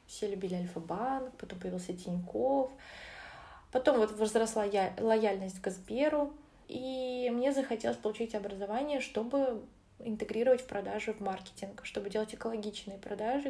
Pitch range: 195-235 Hz